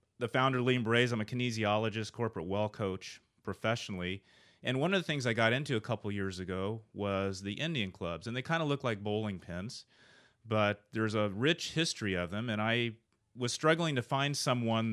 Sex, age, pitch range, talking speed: male, 30-49, 95-115 Hz, 205 wpm